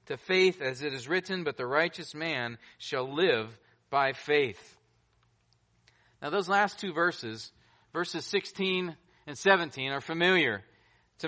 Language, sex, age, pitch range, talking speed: English, male, 40-59, 150-210 Hz, 140 wpm